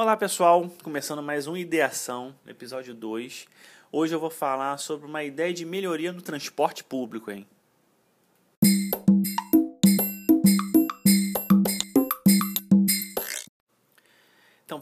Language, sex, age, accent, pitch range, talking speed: Portuguese, male, 20-39, Brazilian, 140-195 Hz, 90 wpm